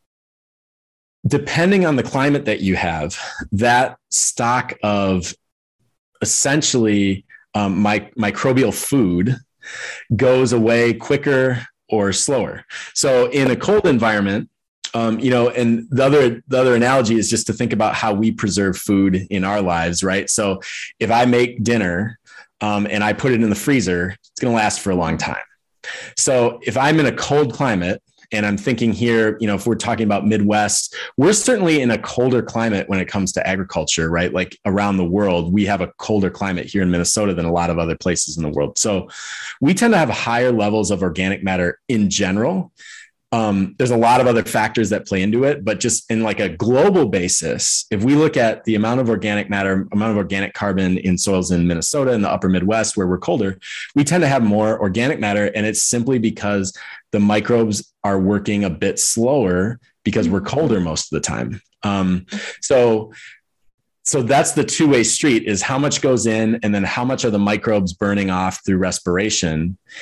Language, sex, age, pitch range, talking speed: English, male, 30-49, 95-120 Hz, 190 wpm